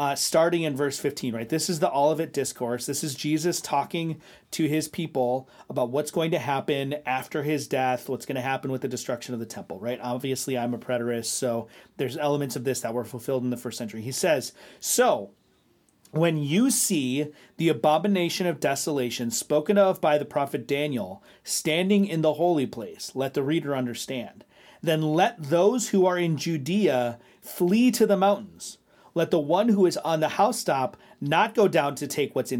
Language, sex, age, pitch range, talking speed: English, male, 30-49, 135-180 Hz, 190 wpm